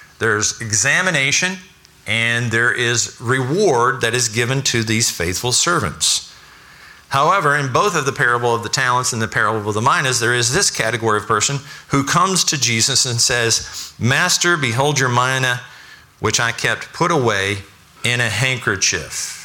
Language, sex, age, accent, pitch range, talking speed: English, male, 50-69, American, 105-130 Hz, 160 wpm